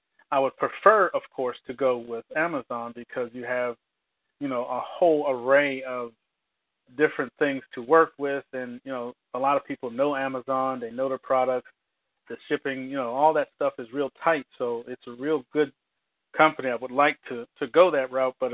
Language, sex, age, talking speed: English, male, 40-59, 195 wpm